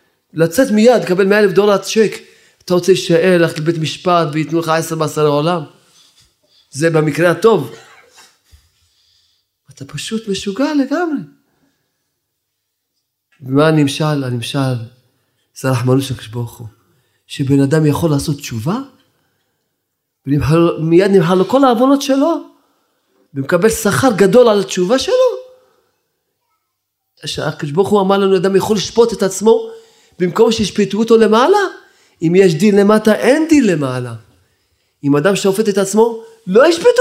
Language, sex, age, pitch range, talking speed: Hebrew, male, 30-49, 150-230 Hz, 120 wpm